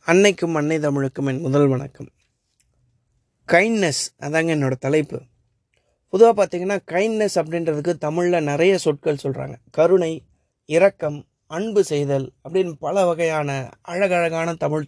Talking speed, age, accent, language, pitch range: 110 wpm, 30-49, native, Tamil, 145-185 Hz